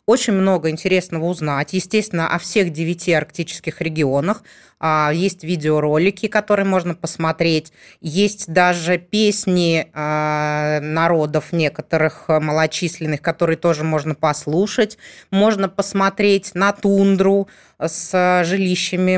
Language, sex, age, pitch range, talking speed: Russian, female, 20-39, 160-195 Hz, 95 wpm